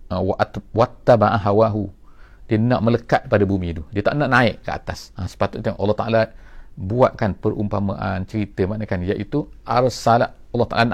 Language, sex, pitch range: English, male, 100-125 Hz